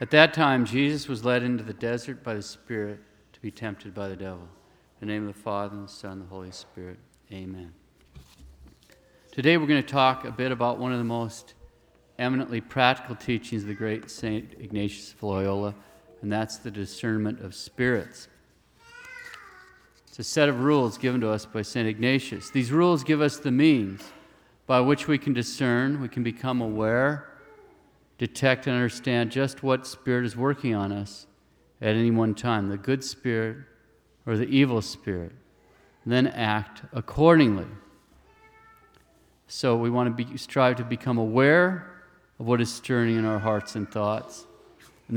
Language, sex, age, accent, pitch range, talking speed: English, male, 40-59, American, 105-130 Hz, 170 wpm